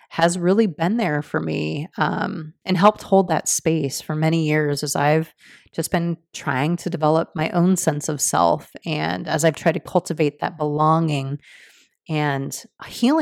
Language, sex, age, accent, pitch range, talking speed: English, female, 30-49, American, 150-180 Hz, 170 wpm